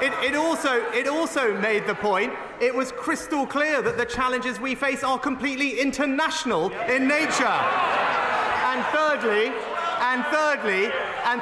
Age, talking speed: 30-49, 130 wpm